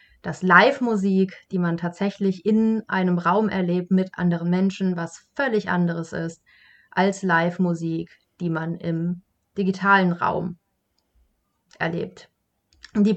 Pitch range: 180-200 Hz